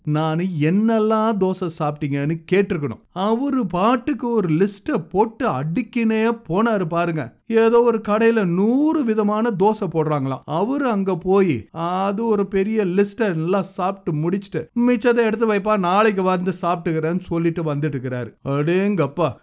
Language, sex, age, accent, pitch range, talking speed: Tamil, male, 30-49, native, 155-220 Hz, 115 wpm